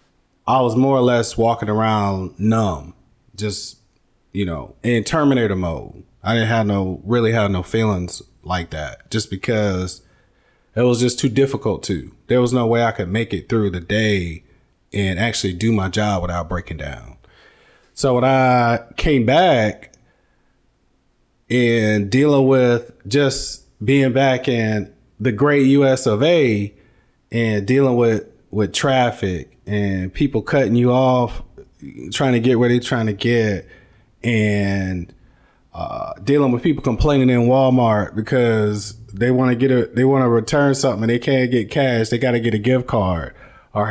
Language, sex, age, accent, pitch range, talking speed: English, male, 30-49, American, 105-130 Hz, 160 wpm